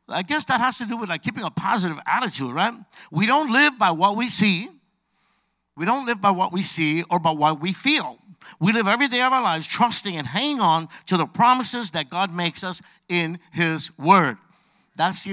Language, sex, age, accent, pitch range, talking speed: English, male, 60-79, American, 170-215 Hz, 215 wpm